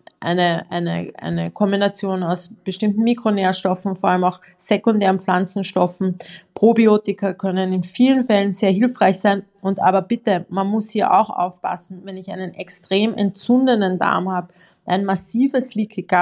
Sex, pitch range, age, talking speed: female, 190-220 Hz, 20-39, 140 wpm